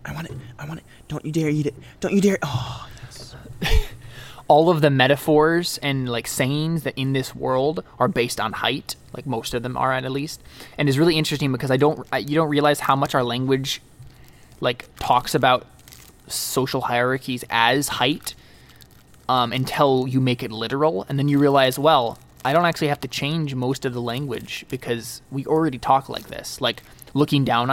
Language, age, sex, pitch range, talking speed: English, 20-39, male, 125-150 Hz, 195 wpm